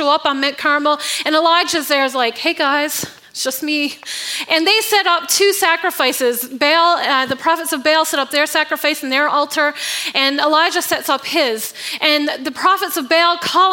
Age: 30-49